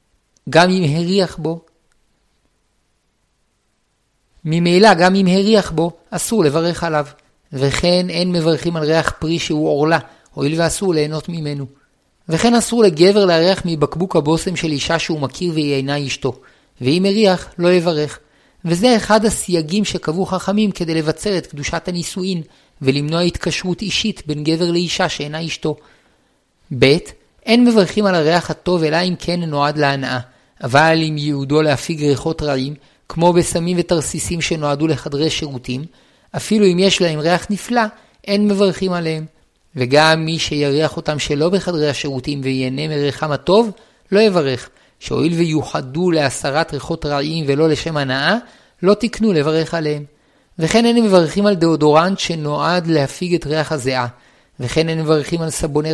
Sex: male